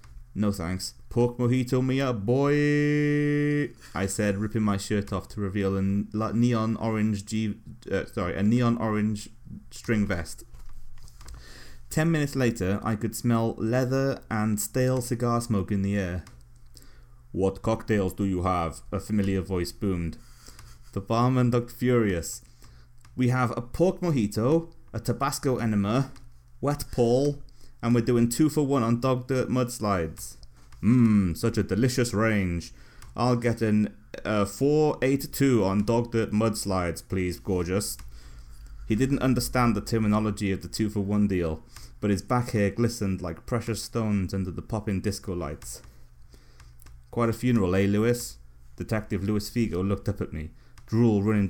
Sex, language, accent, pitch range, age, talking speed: male, English, British, 95-120 Hz, 30-49, 140 wpm